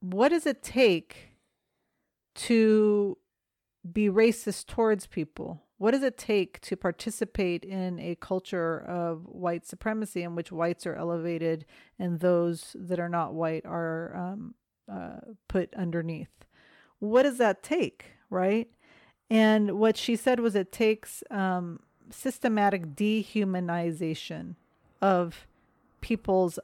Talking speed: 120 wpm